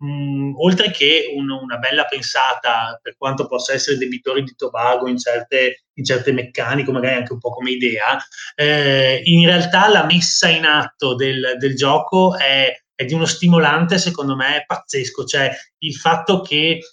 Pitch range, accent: 135-175 Hz, native